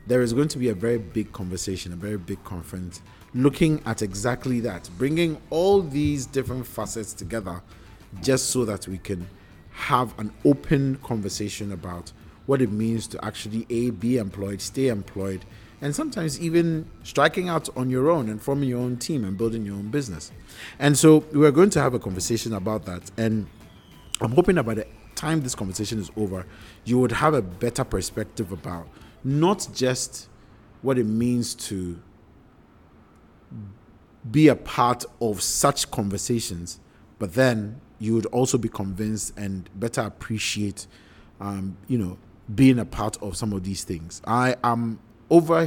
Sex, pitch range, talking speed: male, 100-125 Hz, 165 wpm